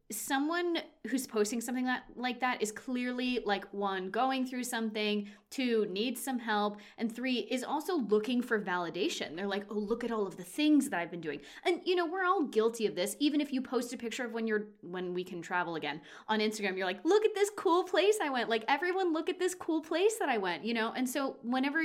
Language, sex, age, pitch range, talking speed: English, female, 20-39, 205-270 Hz, 235 wpm